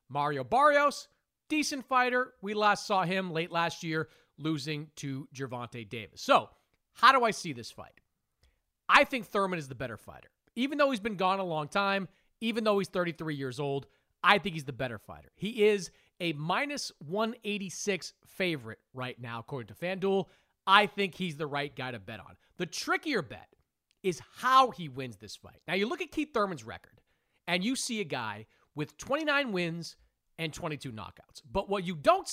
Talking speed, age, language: 185 wpm, 40-59, English